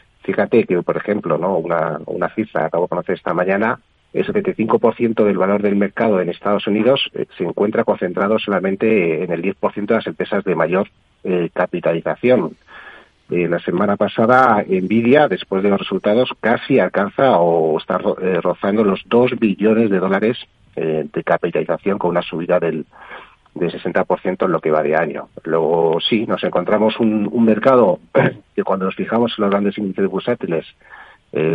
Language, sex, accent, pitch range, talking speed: Spanish, male, Spanish, 90-115 Hz, 170 wpm